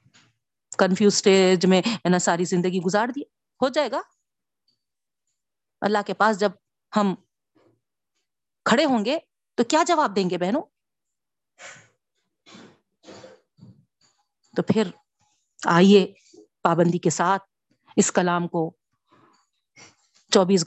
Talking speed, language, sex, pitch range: 95 wpm, Urdu, female, 175-220 Hz